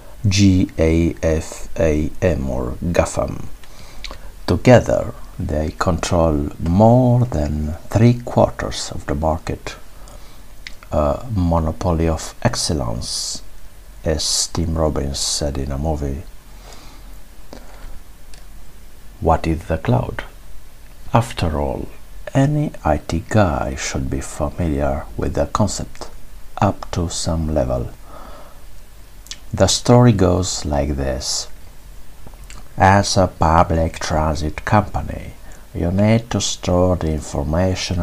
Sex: male